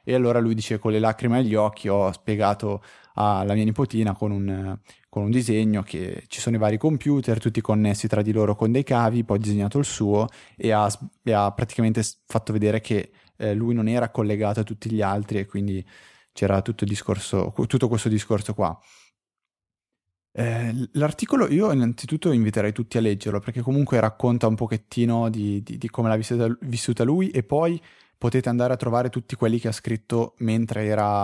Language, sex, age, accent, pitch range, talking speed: Italian, male, 20-39, native, 100-120 Hz, 190 wpm